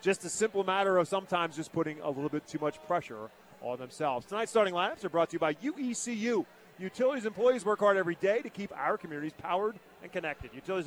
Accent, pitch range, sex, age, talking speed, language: American, 165-220 Hz, male, 40-59, 215 wpm, English